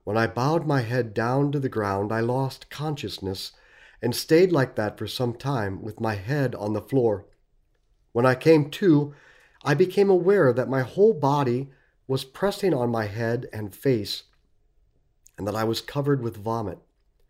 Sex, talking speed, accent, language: male, 175 wpm, American, English